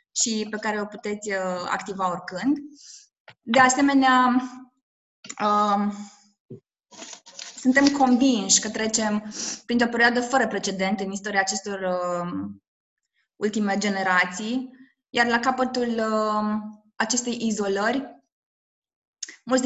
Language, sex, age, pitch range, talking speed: Romanian, female, 20-39, 205-245 Hz, 85 wpm